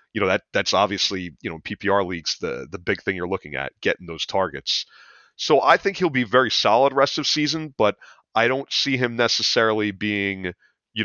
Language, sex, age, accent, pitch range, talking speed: English, male, 30-49, American, 95-125 Hz, 200 wpm